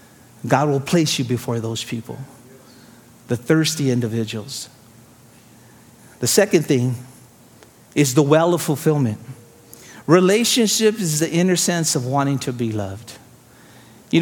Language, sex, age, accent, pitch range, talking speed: English, male, 50-69, American, 120-160 Hz, 120 wpm